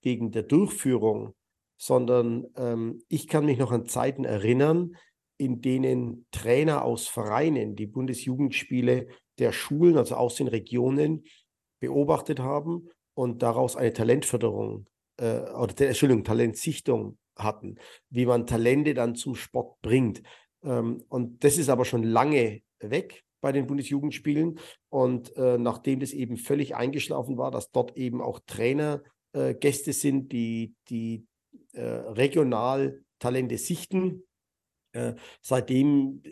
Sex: male